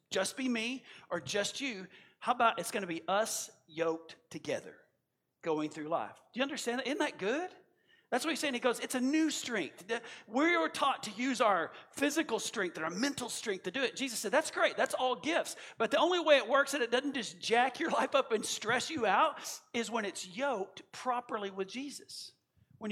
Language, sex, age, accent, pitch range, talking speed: English, male, 40-59, American, 205-275 Hz, 215 wpm